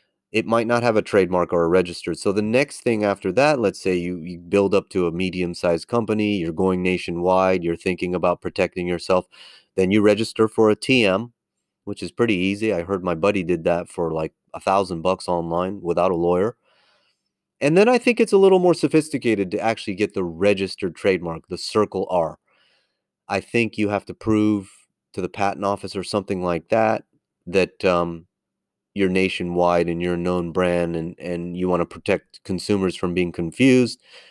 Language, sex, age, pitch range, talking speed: English, male, 30-49, 85-105 Hz, 190 wpm